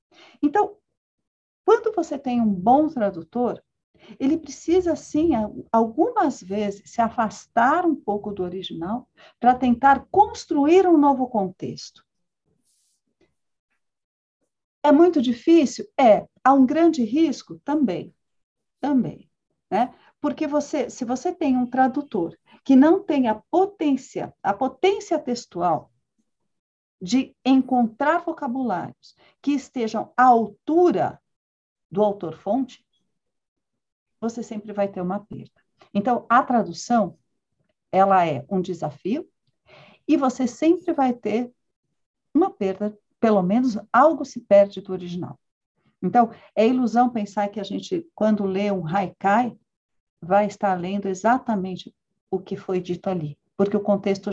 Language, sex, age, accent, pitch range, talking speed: Portuguese, female, 50-69, Brazilian, 200-290 Hz, 120 wpm